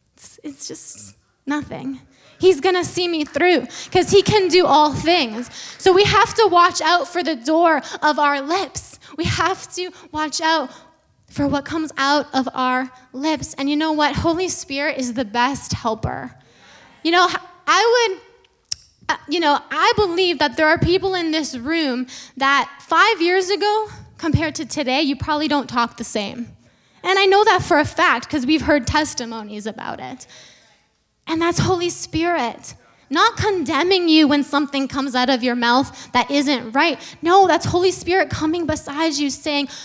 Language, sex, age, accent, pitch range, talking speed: English, female, 10-29, American, 270-345 Hz, 175 wpm